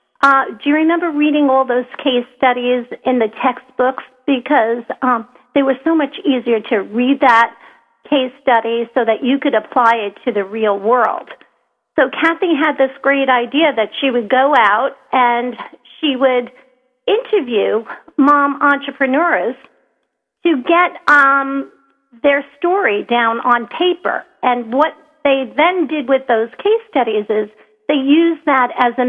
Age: 50-69